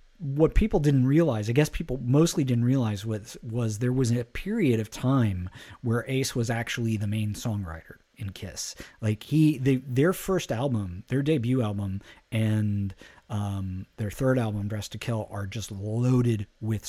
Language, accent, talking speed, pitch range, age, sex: English, American, 170 wpm, 105-130 Hz, 40-59, male